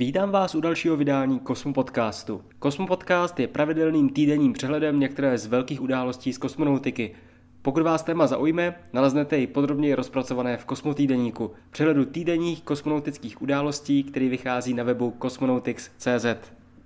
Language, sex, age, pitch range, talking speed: Czech, male, 20-39, 125-160 Hz, 130 wpm